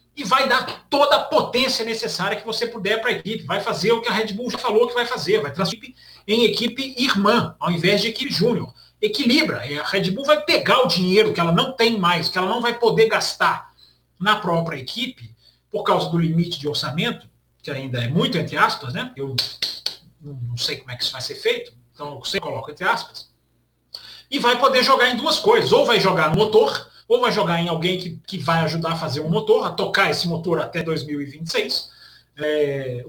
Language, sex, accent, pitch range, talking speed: Portuguese, male, Brazilian, 155-245 Hz, 210 wpm